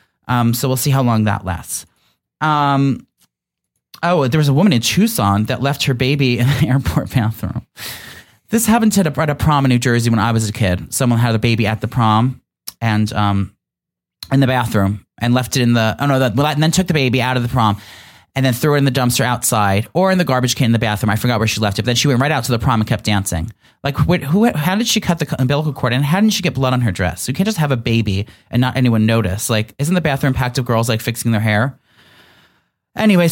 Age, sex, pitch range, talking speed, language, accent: 30-49, male, 115-155 Hz, 255 wpm, English, American